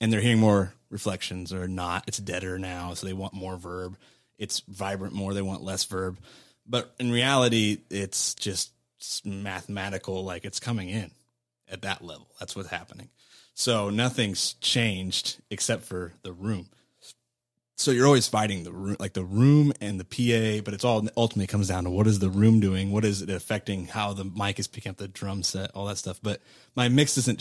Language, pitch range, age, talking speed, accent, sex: English, 95-115 Hz, 20-39, 195 wpm, American, male